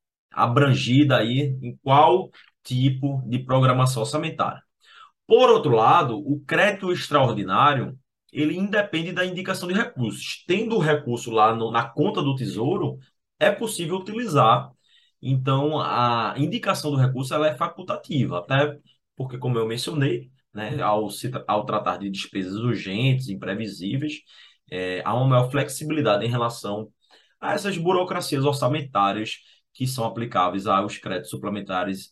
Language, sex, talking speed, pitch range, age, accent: Portuguese, male, 135 wpm, 120-165 Hz, 20-39, Brazilian